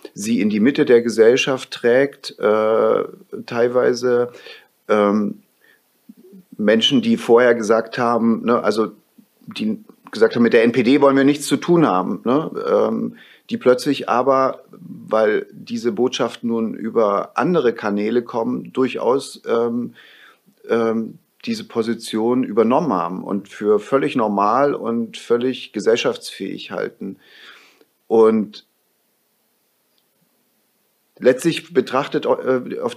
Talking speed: 115 wpm